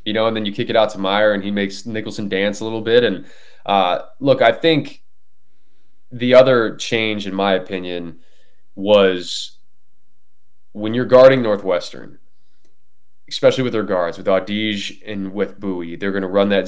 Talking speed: 175 wpm